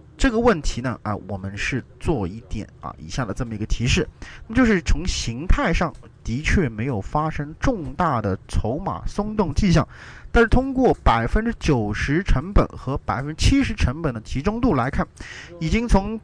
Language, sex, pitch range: Chinese, male, 110-175 Hz